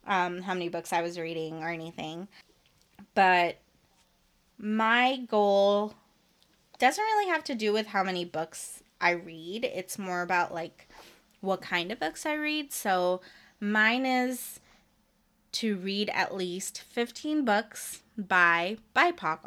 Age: 20-39